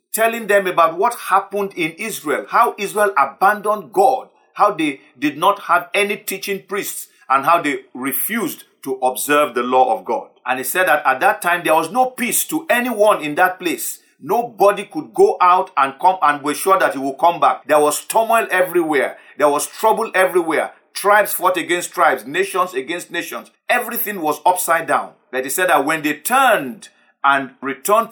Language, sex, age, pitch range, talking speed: English, male, 50-69, 150-210 Hz, 185 wpm